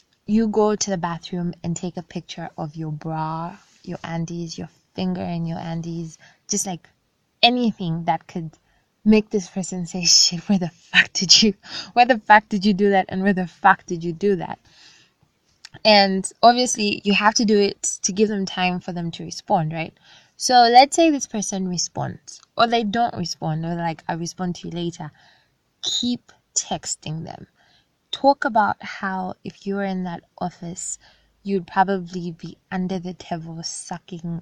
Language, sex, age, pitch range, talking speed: English, female, 20-39, 165-195 Hz, 175 wpm